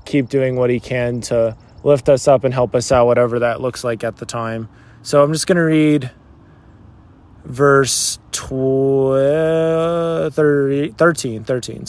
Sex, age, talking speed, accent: male, 20-39, 135 wpm, American